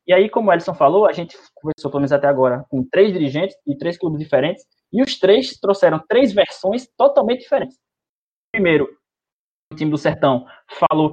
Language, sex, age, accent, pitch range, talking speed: Portuguese, male, 20-39, Brazilian, 145-205 Hz, 185 wpm